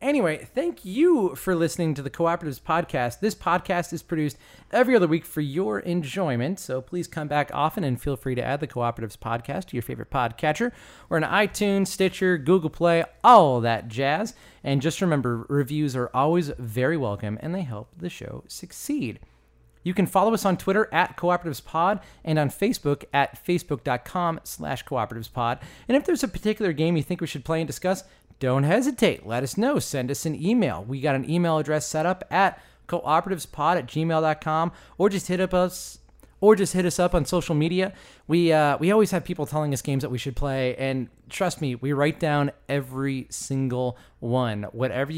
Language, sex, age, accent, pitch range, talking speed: English, male, 30-49, American, 130-180 Hz, 190 wpm